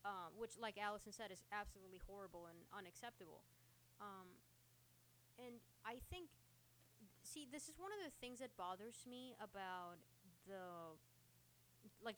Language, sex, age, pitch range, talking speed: English, female, 20-39, 180-235 Hz, 135 wpm